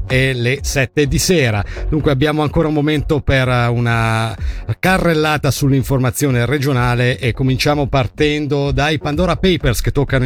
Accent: native